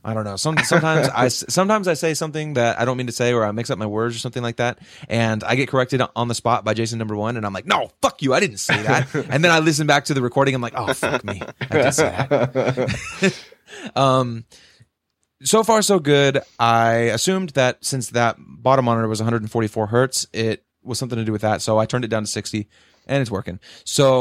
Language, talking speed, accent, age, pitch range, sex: English, 240 wpm, American, 20-39, 110-130 Hz, male